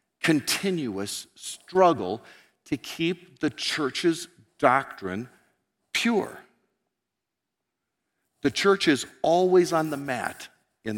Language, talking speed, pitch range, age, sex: English, 85 wpm, 135-225 Hz, 50-69, male